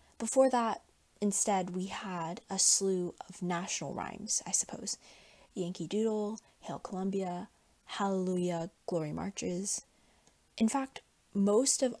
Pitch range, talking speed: 170-210 Hz, 115 wpm